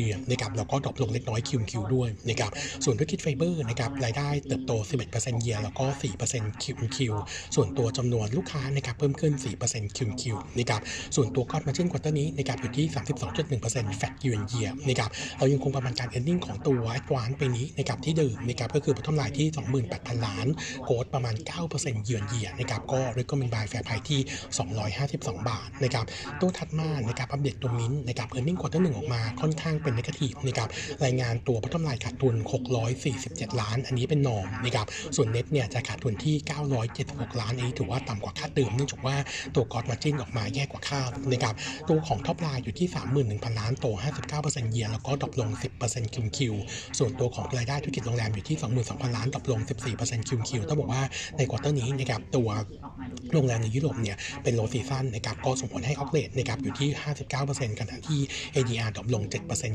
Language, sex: Thai, male